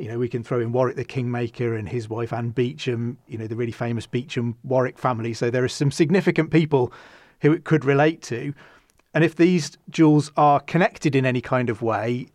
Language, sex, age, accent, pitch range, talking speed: English, male, 30-49, British, 130-155 Hz, 210 wpm